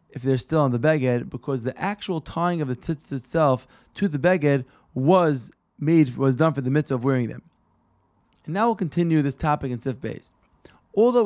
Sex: male